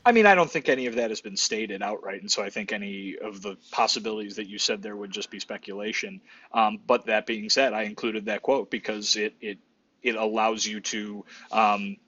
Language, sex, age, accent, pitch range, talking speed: English, male, 30-49, American, 110-125 Hz, 225 wpm